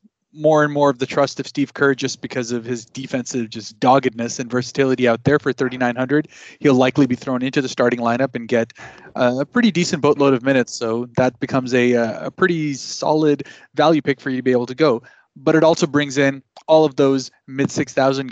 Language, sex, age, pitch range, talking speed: English, male, 20-39, 125-150 Hz, 210 wpm